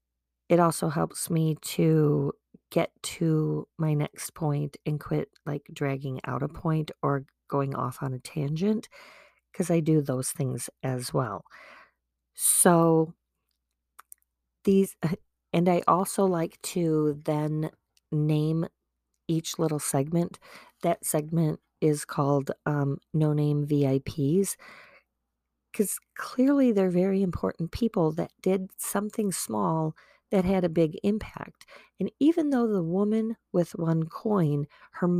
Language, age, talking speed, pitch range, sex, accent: English, 40-59, 130 wpm, 140-175 Hz, female, American